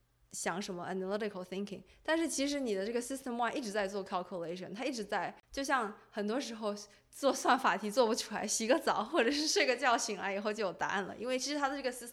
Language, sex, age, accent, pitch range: Chinese, female, 20-39, native, 185-225 Hz